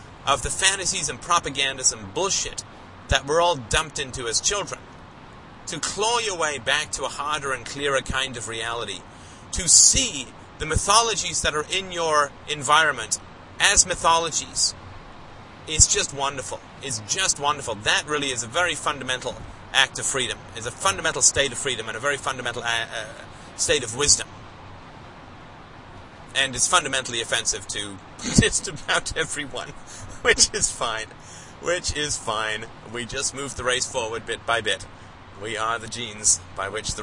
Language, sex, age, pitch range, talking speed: English, male, 30-49, 100-150 Hz, 155 wpm